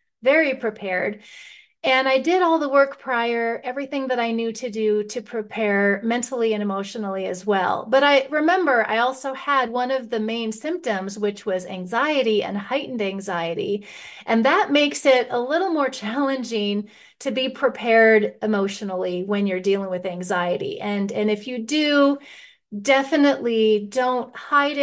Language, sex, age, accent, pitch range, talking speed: English, female, 30-49, American, 210-265 Hz, 155 wpm